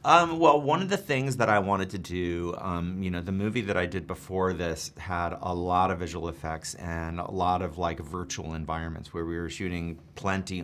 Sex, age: male, 30-49